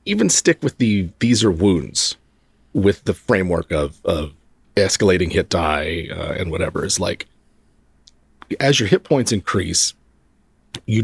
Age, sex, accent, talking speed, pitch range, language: 40-59, male, American, 140 wpm, 85-105 Hz, English